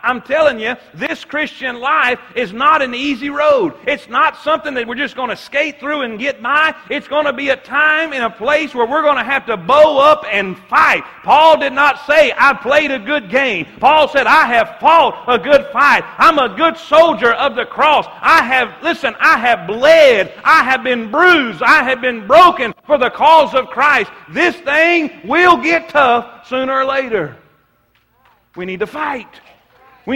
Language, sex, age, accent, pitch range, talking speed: English, male, 40-59, American, 210-300 Hz, 195 wpm